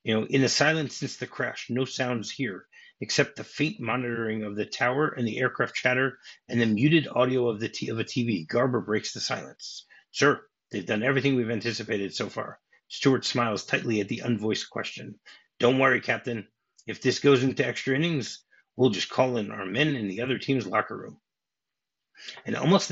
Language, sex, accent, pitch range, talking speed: English, male, American, 115-145 Hz, 195 wpm